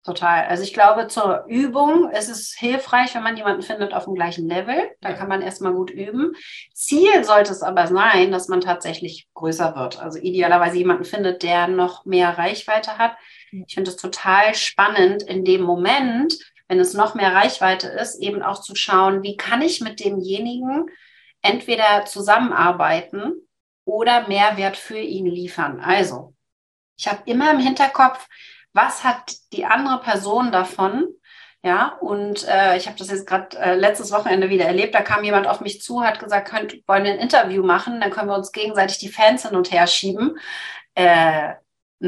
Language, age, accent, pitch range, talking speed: German, 40-59, German, 180-230 Hz, 175 wpm